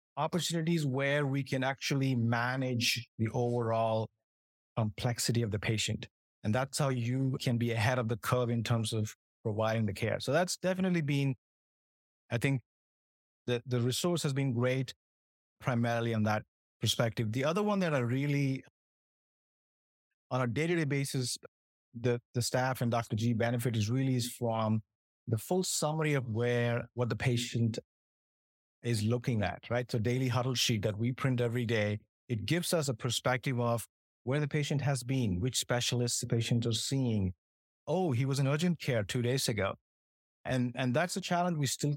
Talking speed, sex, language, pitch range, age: 170 wpm, male, English, 115-135 Hz, 30-49